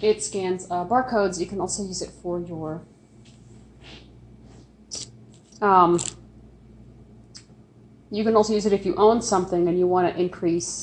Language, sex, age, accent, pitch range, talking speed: English, female, 30-49, American, 175-230 Hz, 145 wpm